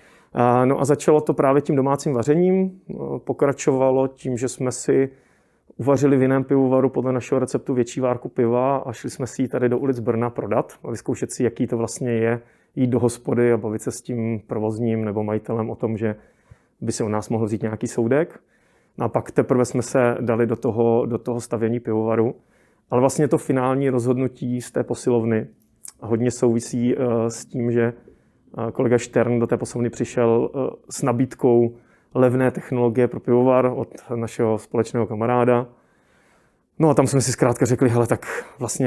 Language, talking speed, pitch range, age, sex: Czech, 175 wpm, 115-130 Hz, 30-49, male